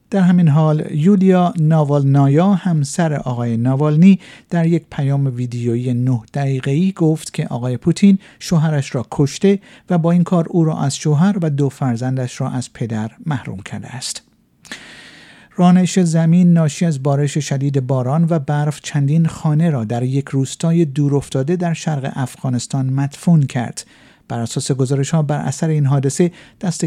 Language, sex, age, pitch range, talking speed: Persian, male, 50-69, 135-170 Hz, 155 wpm